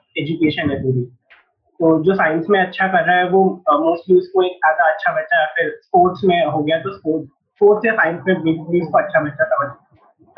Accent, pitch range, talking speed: native, 155-210 Hz, 180 wpm